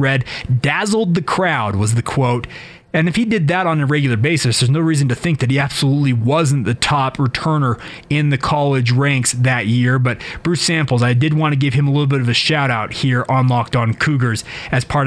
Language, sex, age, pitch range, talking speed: English, male, 30-49, 130-170 Hz, 225 wpm